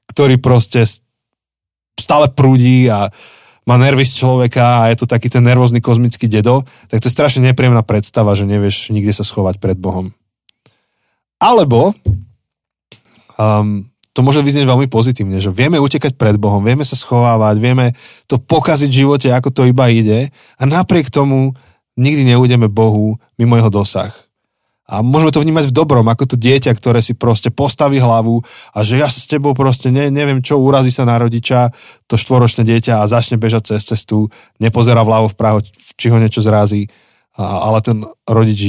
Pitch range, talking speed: 105-130 Hz, 170 wpm